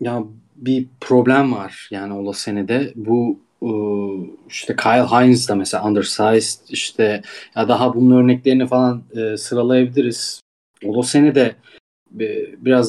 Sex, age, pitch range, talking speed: male, 30-49, 110-130 Hz, 110 wpm